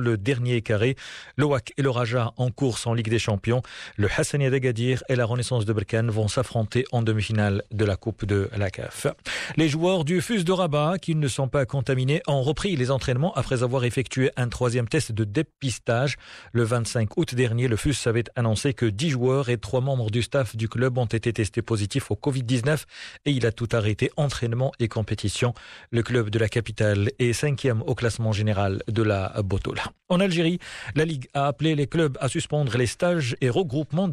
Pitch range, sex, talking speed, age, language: 115-145 Hz, male, 200 wpm, 40-59, Arabic